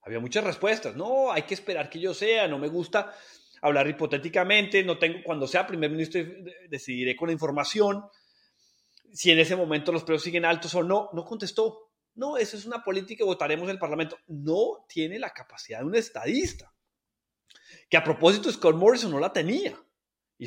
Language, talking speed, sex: Spanish, 180 wpm, male